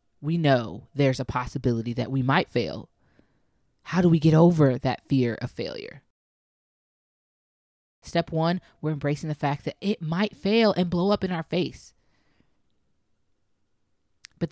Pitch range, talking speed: 135-165 Hz, 145 wpm